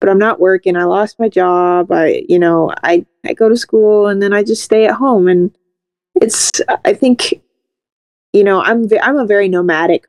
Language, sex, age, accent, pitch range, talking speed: English, female, 20-39, American, 175-215 Hz, 210 wpm